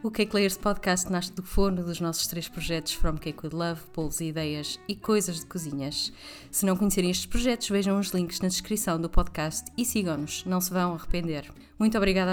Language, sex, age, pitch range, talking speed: Portuguese, female, 20-39, 175-210 Hz, 205 wpm